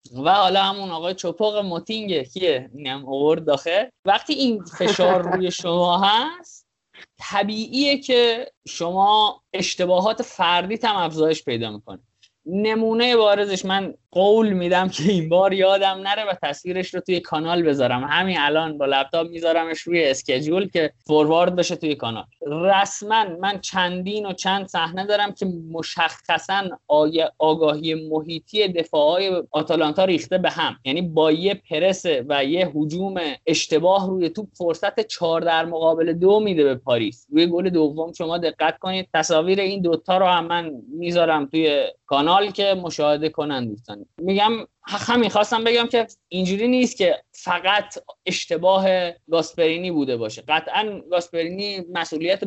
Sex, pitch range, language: male, 160-200 Hz, Persian